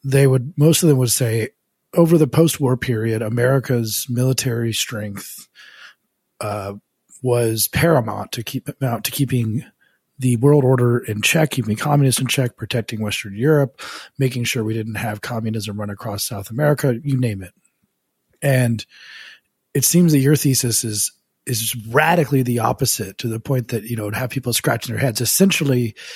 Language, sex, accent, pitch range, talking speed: English, male, American, 110-135 Hz, 165 wpm